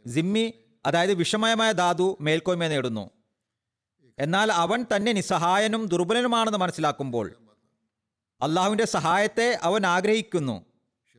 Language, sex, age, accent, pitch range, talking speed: Malayalam, male, 40-59, native, 125-195 Hz, 85 wpm